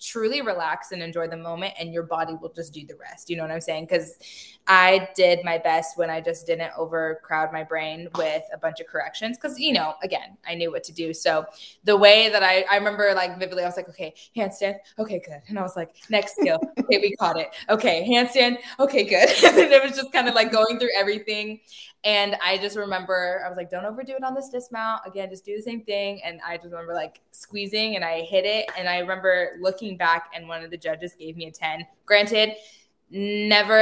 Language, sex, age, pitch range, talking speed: English, female, 20-39, 165-220 Hz, 230 wpm